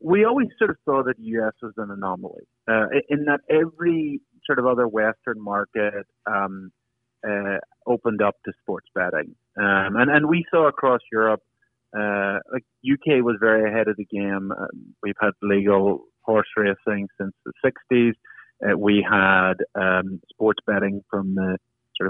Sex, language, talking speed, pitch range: male, English, 165 wpm, 100-125 Hz